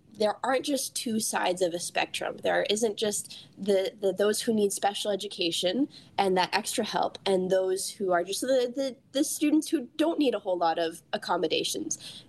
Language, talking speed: English, 190 wpm